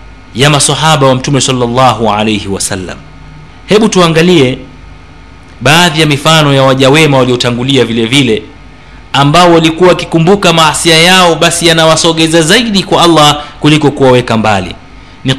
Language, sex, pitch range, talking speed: Swahili, male, 115-175 Hz, 125 wpm